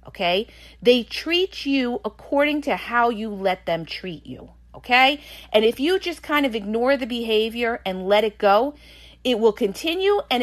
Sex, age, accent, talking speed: female, 40-59, American, 175 wpm